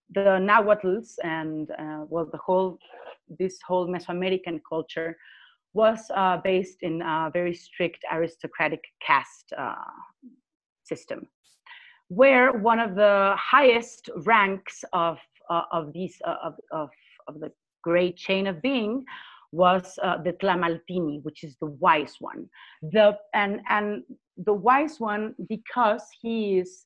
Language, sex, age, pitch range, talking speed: English, female, 30-49, 175-225 Hz, 135 wpm